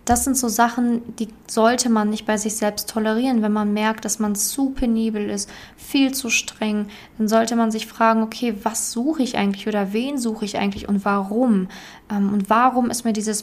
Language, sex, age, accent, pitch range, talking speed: German, female, 20-39, German, 210-230 Hz, 200 wpm